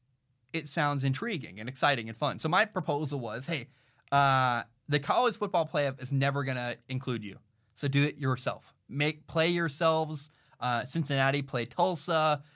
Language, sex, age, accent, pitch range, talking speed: English, male, 20-39, American, 125-155 Hz, 160 wpm